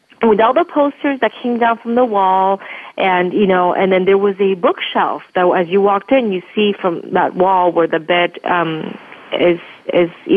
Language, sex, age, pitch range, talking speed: English, female, 30-49, 180-220 Hz, 210 wpm